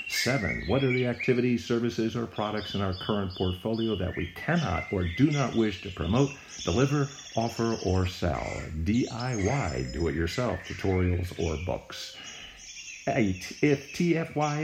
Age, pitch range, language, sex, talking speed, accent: 50-69, 90-120 Hz, English, male, 135 wpm, American